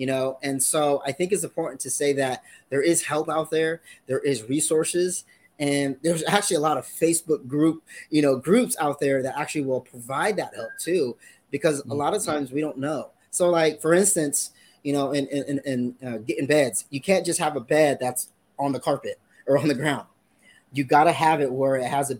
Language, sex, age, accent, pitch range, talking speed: English, male, 20-39, American, 135-165 Hz, 220 wpm